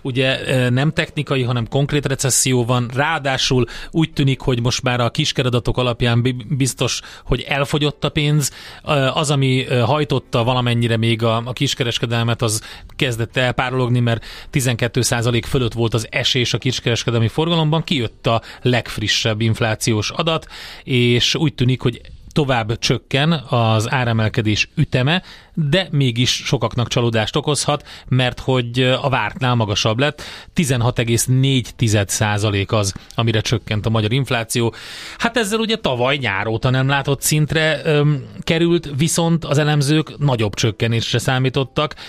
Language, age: Hungarian, 30-49